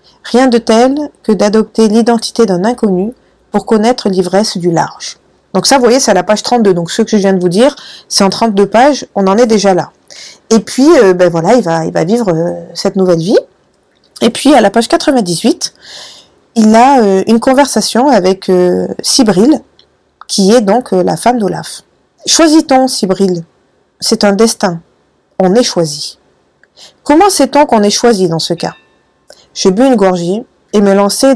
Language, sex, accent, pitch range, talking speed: French, female, French, 195-245 Hz, 185 wpm